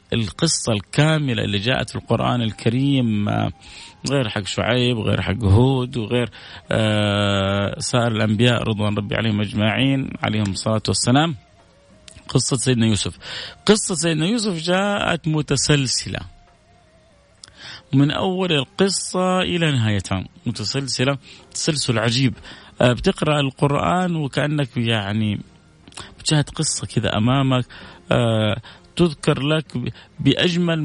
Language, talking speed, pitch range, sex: Arabic, 105 wpm, 105-140 Hz, male